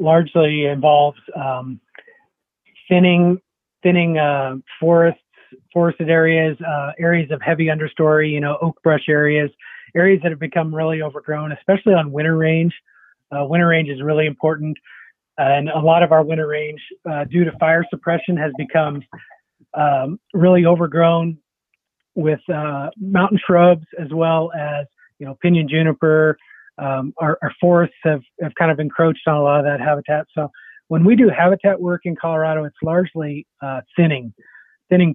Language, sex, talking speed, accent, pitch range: English, male, 155 wpm, American, 145-170 Hz